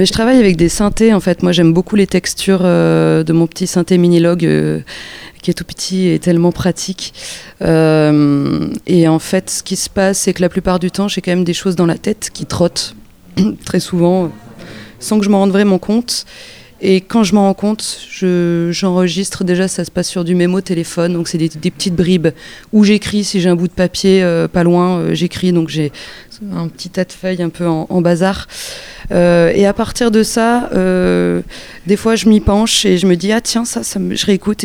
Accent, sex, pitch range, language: French, female, 170-195 Hz, French